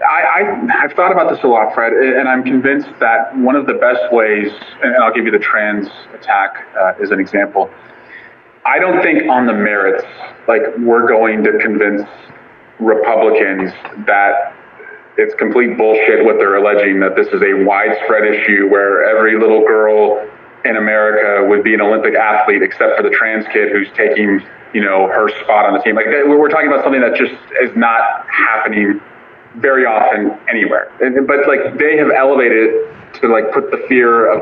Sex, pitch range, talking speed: male, 105-150 Hz, 180 wpm